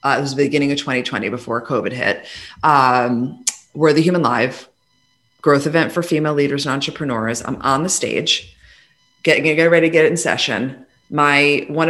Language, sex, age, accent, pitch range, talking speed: English, female, 30-49, American, 130-160 Hz, 175 wpm